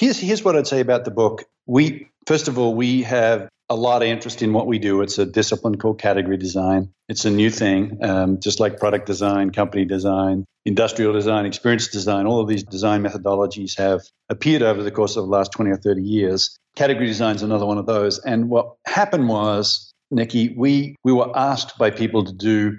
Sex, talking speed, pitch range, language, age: male, 210 wpm, 100-125 Hz, English, 50-69